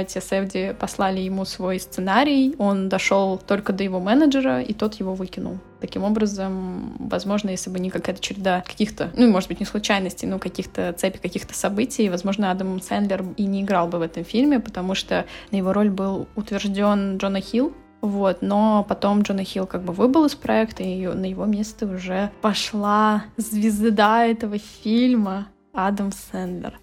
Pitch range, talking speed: 190-220 Hz, 170 wpm